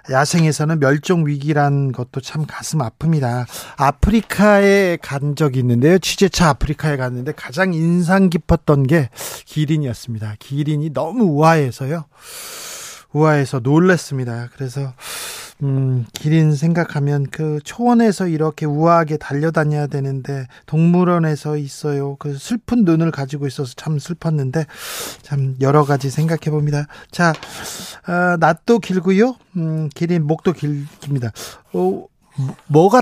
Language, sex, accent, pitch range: Korean, male, native, 140-175 Hz